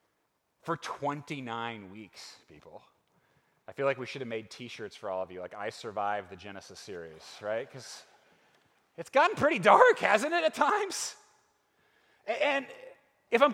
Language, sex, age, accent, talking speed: English, male, 30-49, American, 155 wpm